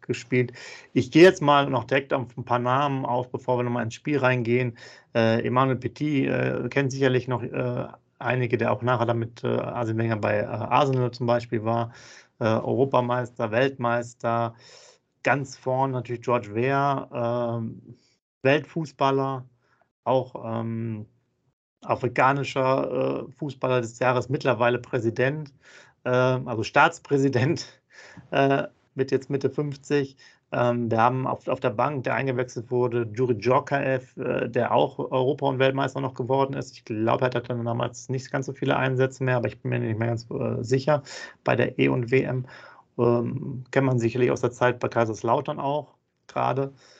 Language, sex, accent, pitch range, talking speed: German, male, German, 120-135 Hz, 160 wpm